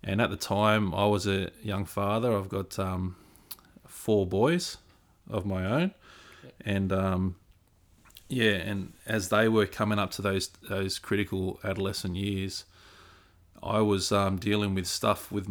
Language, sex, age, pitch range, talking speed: English, male, 20-39, 95-105 Hz, 150 wpm